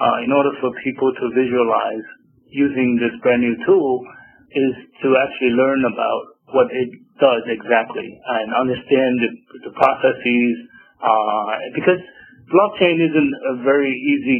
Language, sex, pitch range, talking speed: English, male, 125-165 Hz, 140 wpm